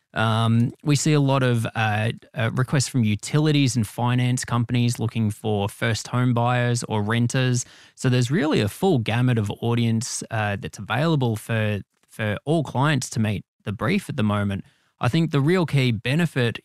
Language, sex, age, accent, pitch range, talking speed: English, male, 20-39, Australian, 110-130 Hz, 175 wpm